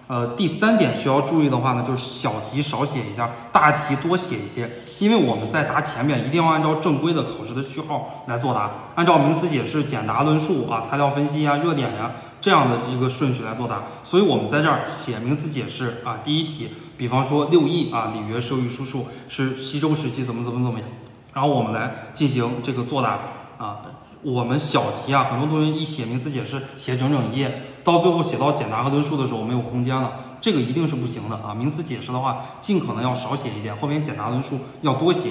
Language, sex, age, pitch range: Chinese, male, 20-39, 120-155 Hz